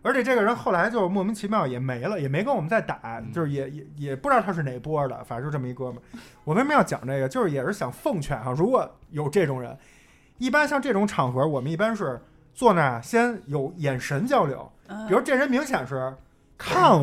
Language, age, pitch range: Chinese, 20-39, 130-195 Hz